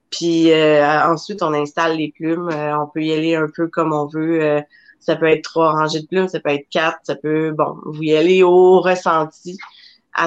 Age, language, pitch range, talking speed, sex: 30-49, French, 160-180 Hz, 220 wpm, female